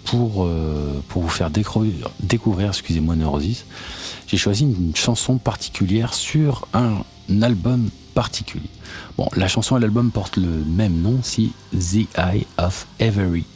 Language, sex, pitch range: French, male, 80-110 Hz